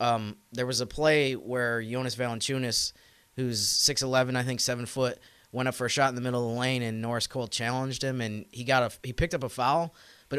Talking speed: 235 wpm